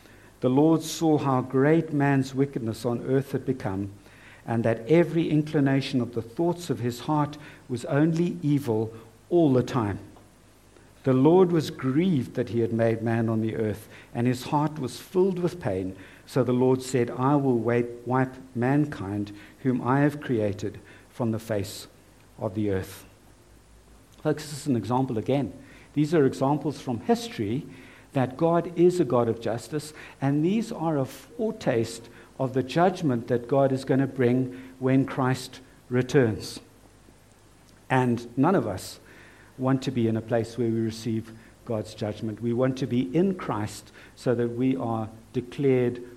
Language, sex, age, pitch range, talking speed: English, male, 60-79, 115-140 Hz, 160 wpm